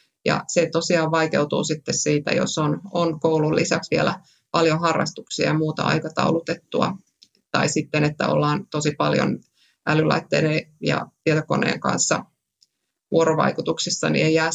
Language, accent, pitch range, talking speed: Finnish, native, 150-180 Hz, 130 wpm